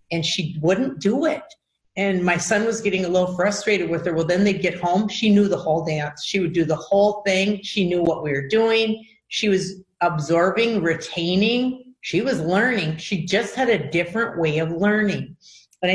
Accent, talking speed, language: American, 200 wpm, English